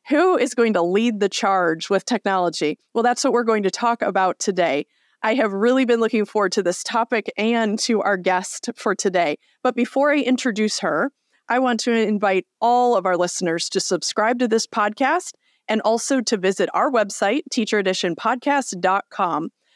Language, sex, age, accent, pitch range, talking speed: English, female, 30-49, American, 190-245 Hz, 175 wpm